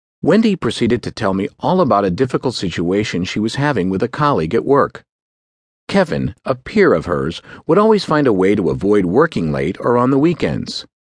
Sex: male